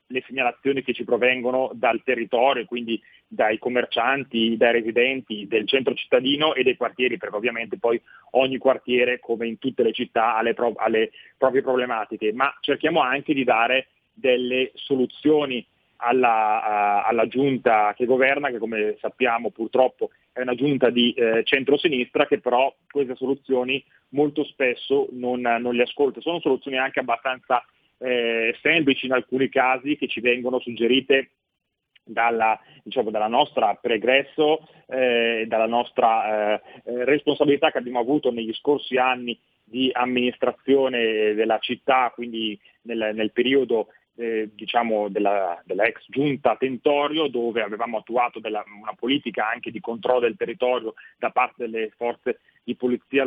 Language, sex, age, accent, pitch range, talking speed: Italian, male, 30-49, native, 115-135 Hz, 145 wpm